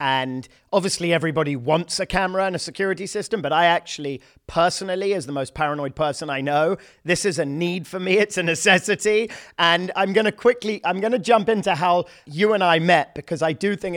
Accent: British